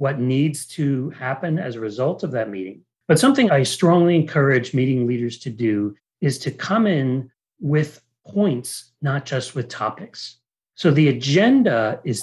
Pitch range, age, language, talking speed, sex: 125-175 Hz, 40-59, English, 160 wpm, male